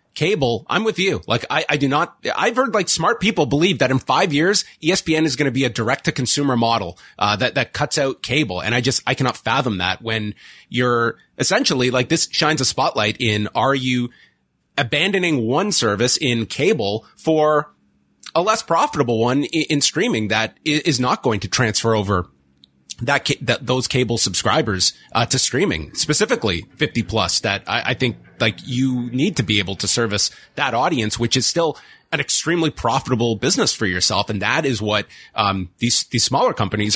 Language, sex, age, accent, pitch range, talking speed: English, male, 30-49, American, 105-140 Hz, 190 wpm